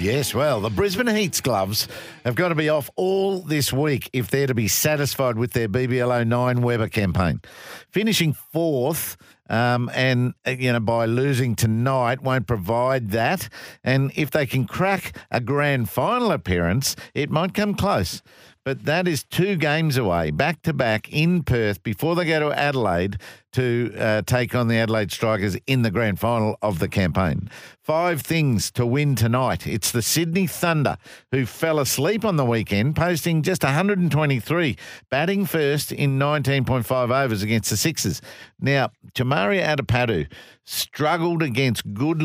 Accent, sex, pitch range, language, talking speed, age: Australian, male, 115-155 Hz, English, 155 wpm, 50-69